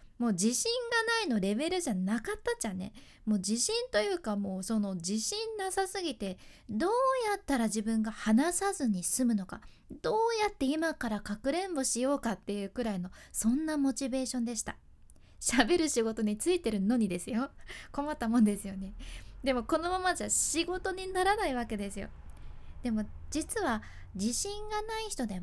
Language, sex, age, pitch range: Japanese, female, 20-39, 220-355 Hz